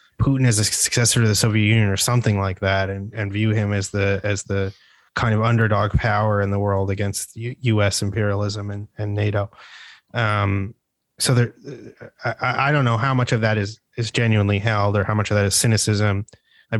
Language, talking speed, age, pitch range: English, 205 wpm, 20-39, 100-110 Hz